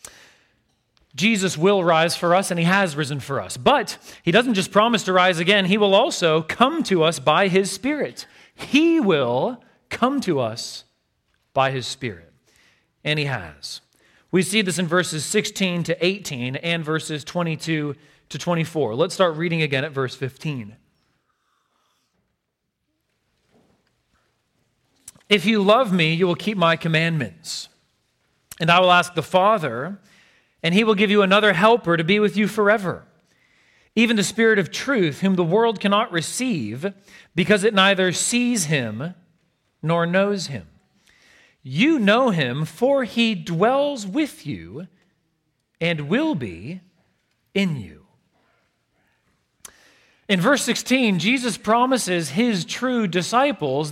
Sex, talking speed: male, 140 wpm